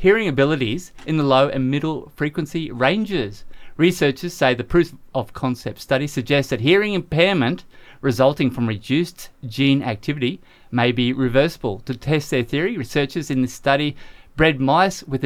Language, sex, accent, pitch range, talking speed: English, male, Australian, 120-145 Hz, 145 wpm